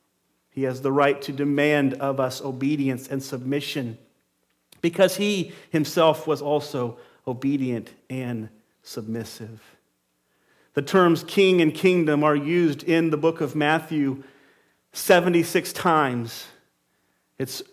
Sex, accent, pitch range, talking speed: male, American, 125-165 Hz, 115 wpm